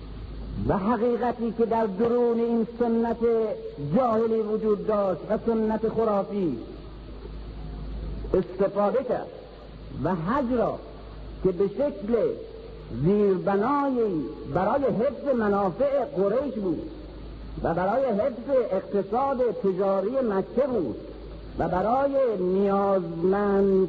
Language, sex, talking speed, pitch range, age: Persian, male, 90 wpm, 190-240 Hz, 50-69